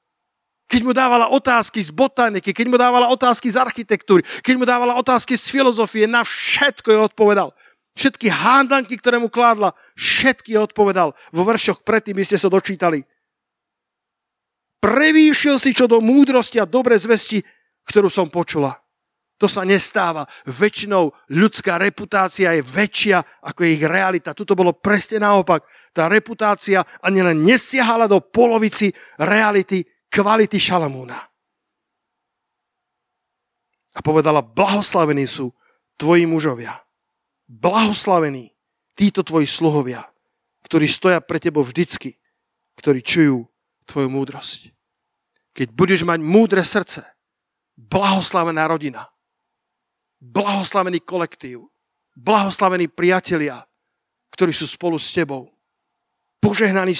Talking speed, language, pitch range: 115 wpm, Slovak, 165-225 Hz